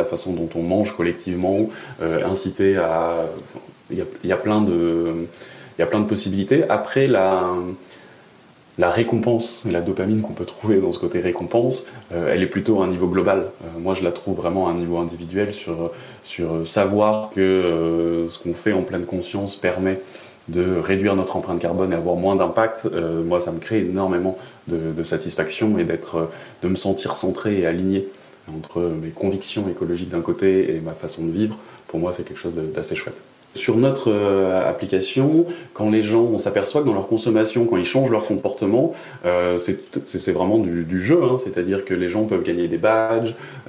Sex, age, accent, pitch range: male, 20-39, French, 85-110 Hz